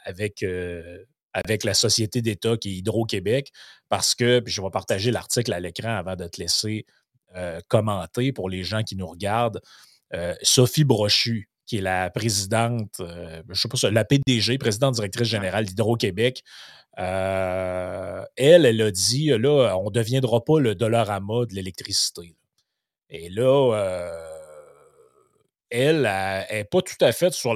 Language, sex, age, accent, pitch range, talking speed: French, male, 30-49, Canadian, 95-120 Hz, 155 wpm